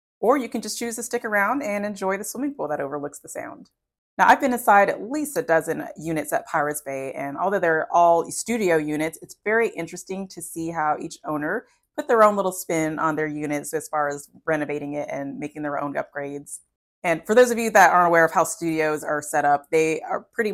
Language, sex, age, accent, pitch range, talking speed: English, female, 20-39, American, 150-175 Hz, 230 wpm